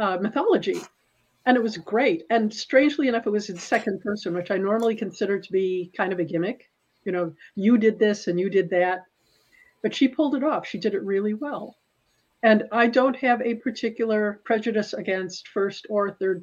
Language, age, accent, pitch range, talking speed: English, 50-69, American, 195-235 Hz, 195 wpm